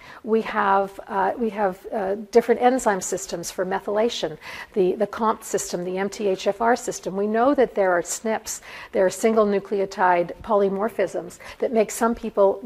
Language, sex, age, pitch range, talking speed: English, female, 50-69, 195-230 Hz, 150 wpm